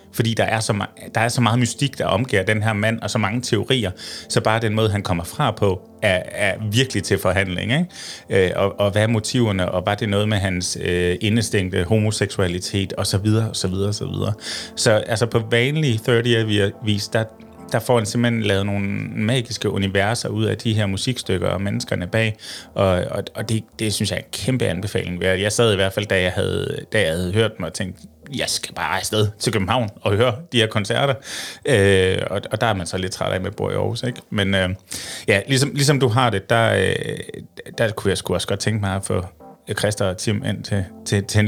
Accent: native